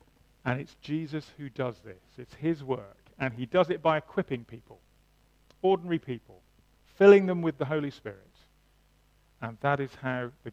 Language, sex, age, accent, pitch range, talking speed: English, male, 40-59, British, 125-185 Hz, 165 wpm